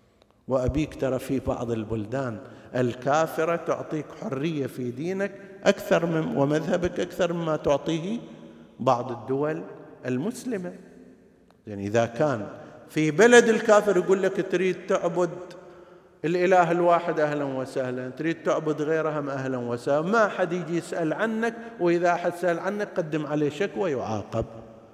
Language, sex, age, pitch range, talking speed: Arabic, male, 50-69, 135-195 Hz, 125 wpm